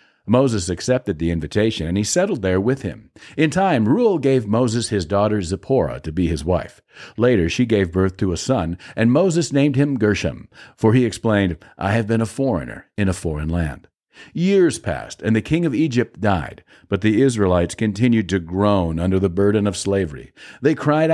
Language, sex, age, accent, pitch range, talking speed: English, male, 50-69, American, 95-135 Hz, 190 wpm